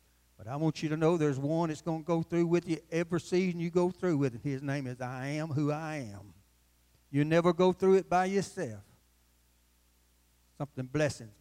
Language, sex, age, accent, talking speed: English, male, 60-79, American, 210 wpm